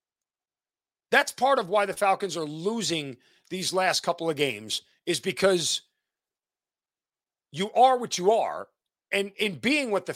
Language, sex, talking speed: English, male, 150 wpm